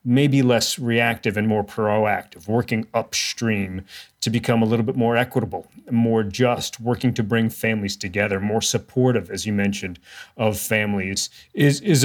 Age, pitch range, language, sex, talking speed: 40-59, 105-135 Hz, English, male, 155 wpm